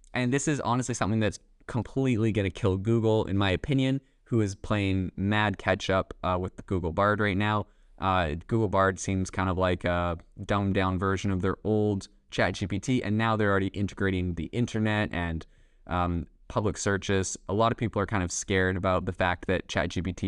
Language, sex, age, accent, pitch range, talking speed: English, male, 20-39, American, 95-110 Hz, 195 wpm